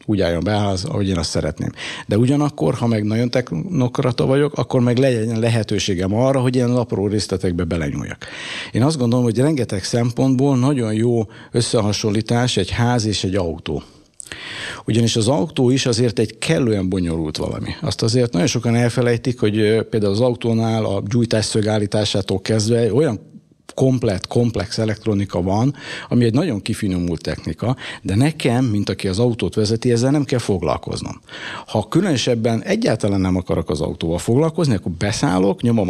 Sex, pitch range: male, 100-125 Hz